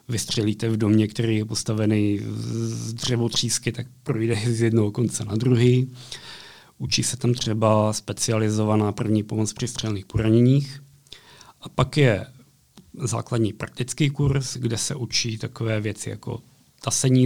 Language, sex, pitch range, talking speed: Slovak, male, 115-135 Hz, 130 wpm